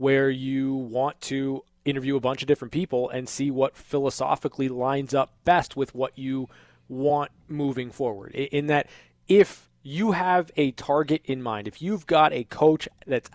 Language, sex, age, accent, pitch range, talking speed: English, male, 20-39, American, 130-160 Hz, 170 wpm